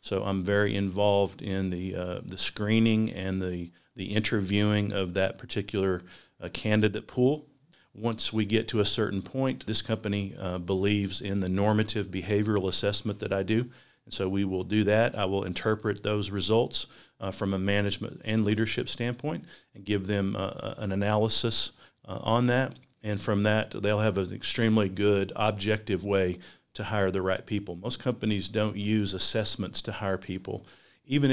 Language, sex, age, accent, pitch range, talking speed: English, male, 40-59, American, 100-110 Hz, 170 wpm